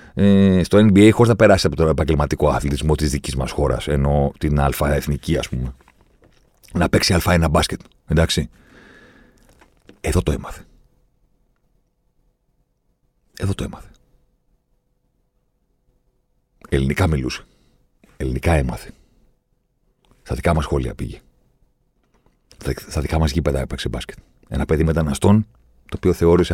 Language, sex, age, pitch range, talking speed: Greek, male, 40-59, 70-95 Hz, 115 wpm